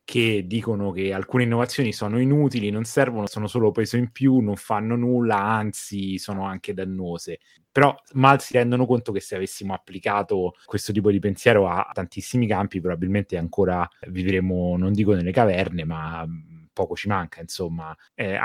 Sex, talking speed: male, 165 wpm